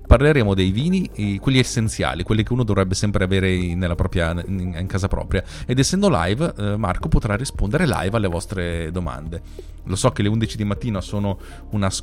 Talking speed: 175 wpm